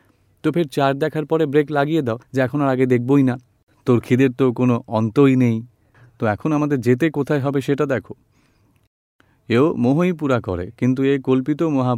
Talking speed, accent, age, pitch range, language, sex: 75 wpm, native, 40-59, 105-135 Hz, Gujarati, male